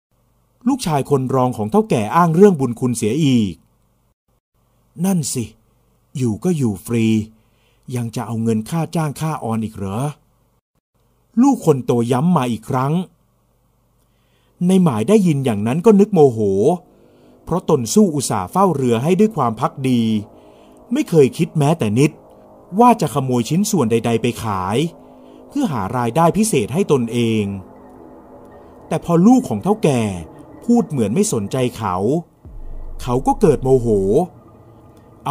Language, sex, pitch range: Thai, male, 110-175 Hz